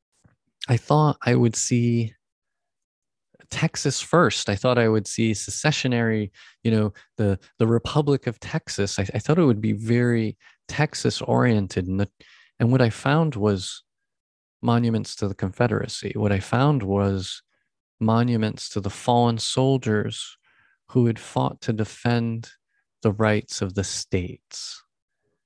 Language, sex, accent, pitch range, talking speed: English, male, American, 95-120 Hz, 130 wpm